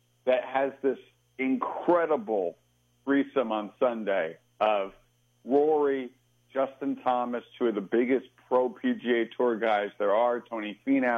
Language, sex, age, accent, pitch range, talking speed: English, male, 50-69, American, 100-135 Hz, 125 wpm